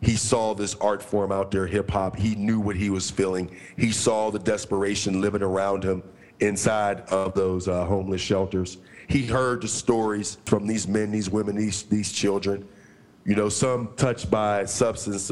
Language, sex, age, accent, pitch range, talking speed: English, male, 40-59, American, 95-115 Hz, 175 wpm